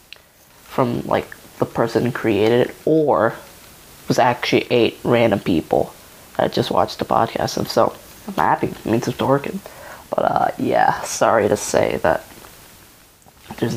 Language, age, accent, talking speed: English, 20-39, American, 155 wpm